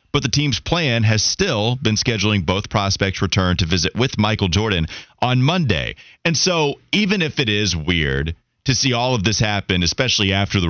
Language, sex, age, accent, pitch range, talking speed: English, male, 30-49, American, 95-125 Hz, 190 wpm